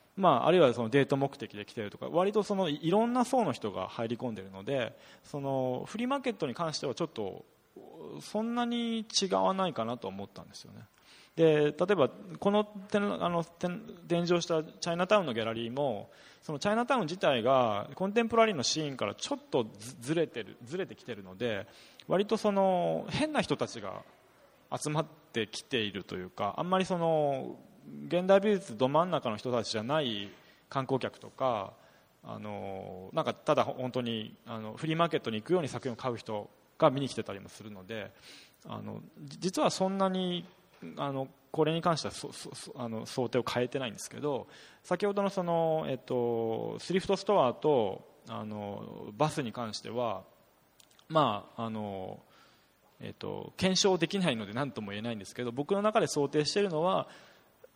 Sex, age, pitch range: male, 20-39, 115-190 Hz